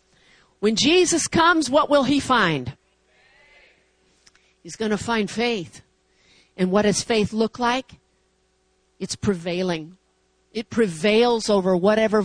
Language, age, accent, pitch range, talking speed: English, 50-69, American, 225-300 Hz, 120 wpm